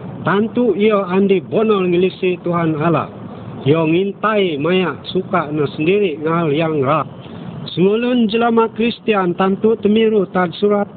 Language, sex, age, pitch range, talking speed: Malay, male, 50-69, 155-200 Hz, 120 wpm